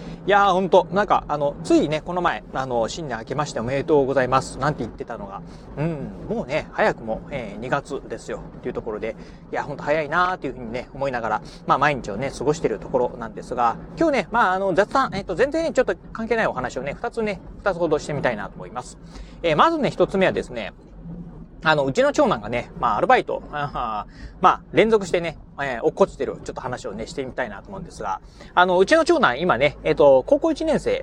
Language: Japanese